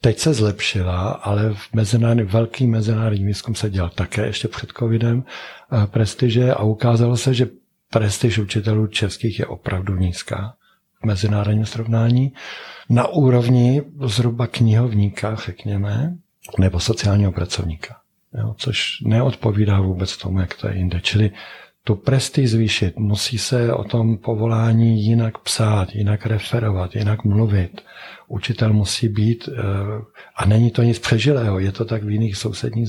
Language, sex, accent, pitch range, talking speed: Czech, male, native, 105-120 Hz, 140 wpm